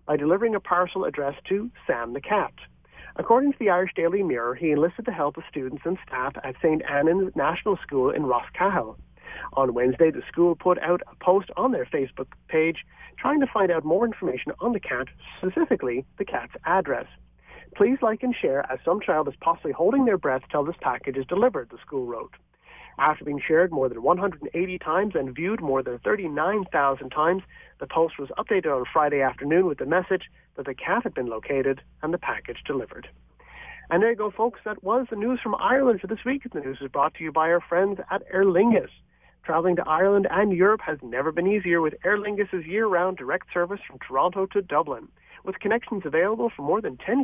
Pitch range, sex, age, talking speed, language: 155-205 Hz, male, 40-59, 205 wpm, English